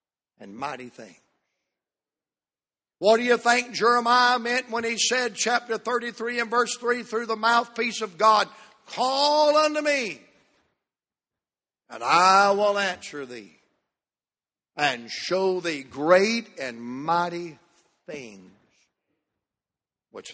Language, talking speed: English, 110 wpm